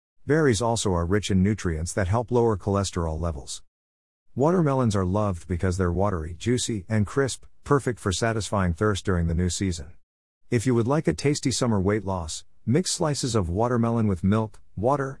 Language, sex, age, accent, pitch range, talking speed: English, male, 50-69, American, 90-115 Hz, 175 wpm